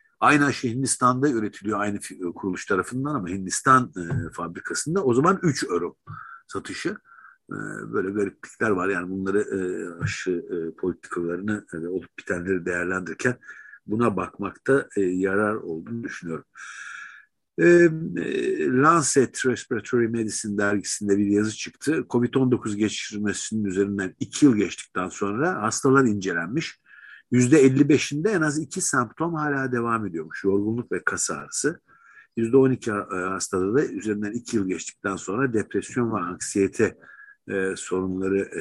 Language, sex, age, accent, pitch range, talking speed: Turkish, male, 50-69, native, 95-130 Hz, 120 wpm